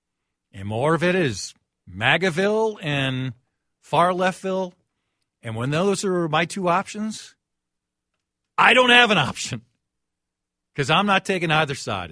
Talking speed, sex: 135 wpm, male